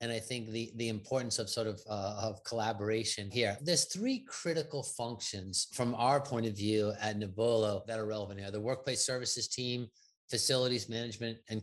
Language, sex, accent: English, male, American